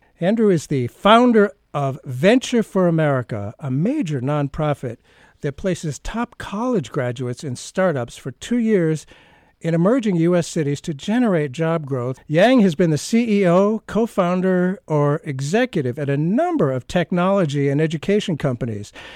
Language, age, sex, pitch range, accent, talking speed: English, 50-69, male, 140-185 Hz, American, 145 wpm